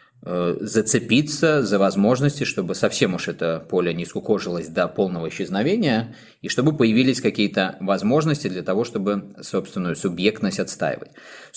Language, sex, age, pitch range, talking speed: Russian, male, 20-39, 95-120 Hz, 125 wpm